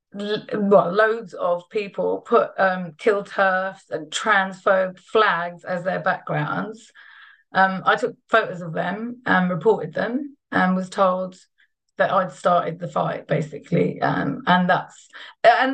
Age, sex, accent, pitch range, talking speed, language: 30-49, female, British, 185-225 Hz, 135 wpm, English